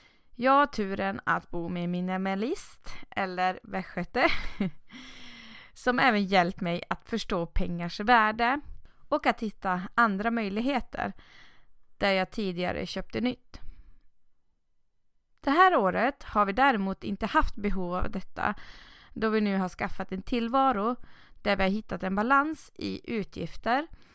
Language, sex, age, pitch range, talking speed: Swedish, female, 20-39, 190-255 Hz, 130 wpm